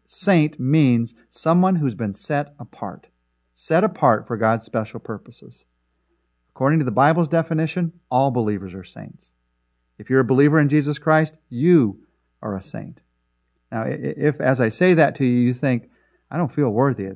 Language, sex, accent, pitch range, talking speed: English, male, American, 115-155 Hz, 170 wpm